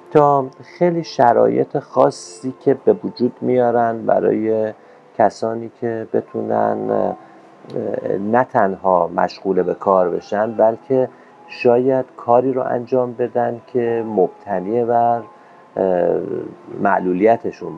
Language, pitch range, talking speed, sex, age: Persian, 95-120 Hz, 90 wpm, male, 50-69